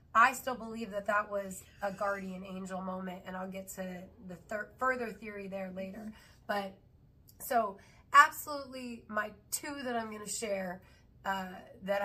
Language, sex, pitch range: English, female, 185-215 Hz